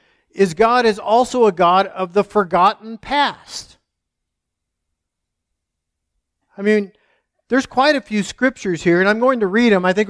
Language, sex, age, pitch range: English, male, 50-69, 195-240 Hz